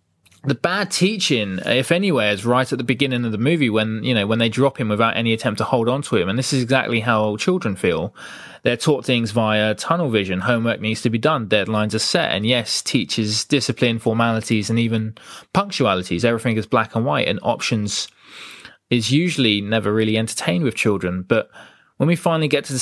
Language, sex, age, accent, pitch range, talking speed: English, male, 20-39, British, 110-130 Hz, 210 wpm